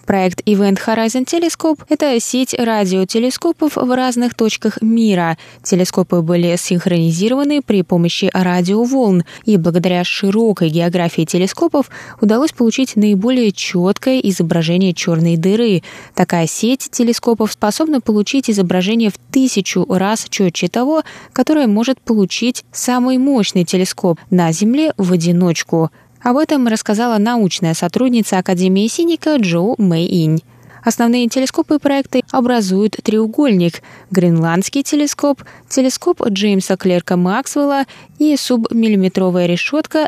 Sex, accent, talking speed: female, native, 110 wpm